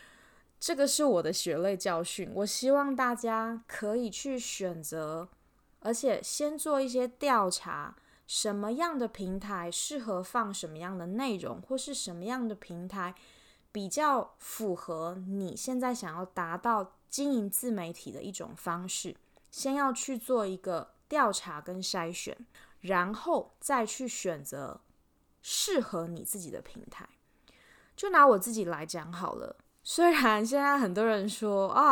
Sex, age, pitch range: female, 20-39, 180-255 Hz